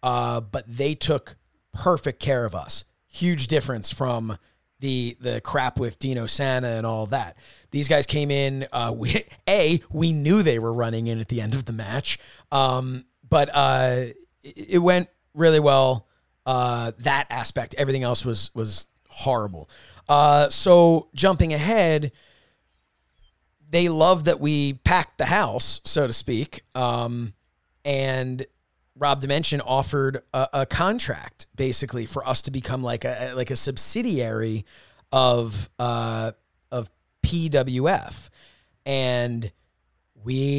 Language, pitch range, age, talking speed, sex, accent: English, 120-145 Hz, 30-49, 135 wpm, male, American